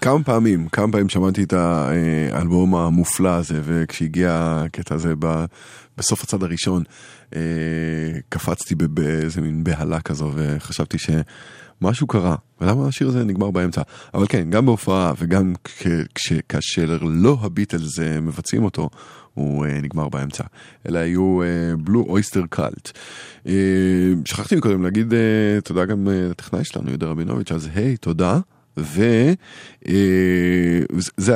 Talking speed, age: 120 wpm, 20-39